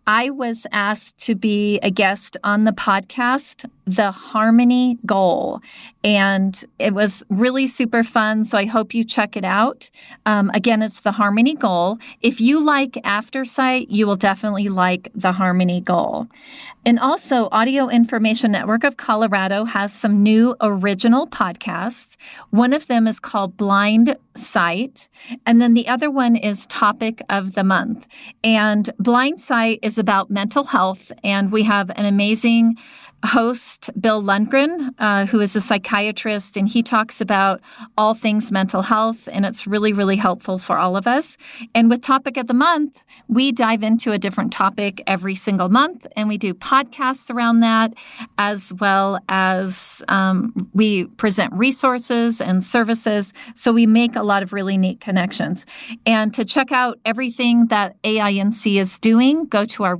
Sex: female